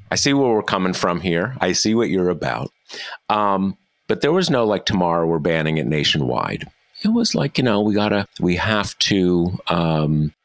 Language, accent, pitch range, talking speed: English, American, 80-100 Hz, 195 wpm